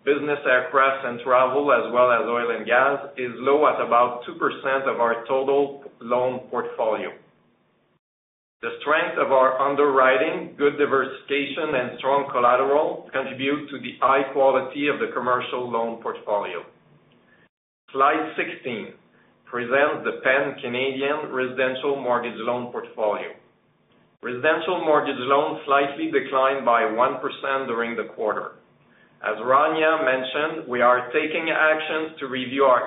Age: 40-59